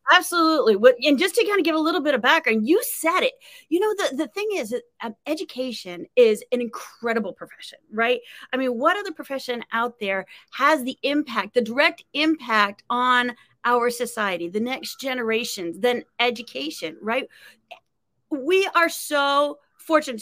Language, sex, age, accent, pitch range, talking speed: English, female, 30-49, American, 230-320 Hz, 160 wpm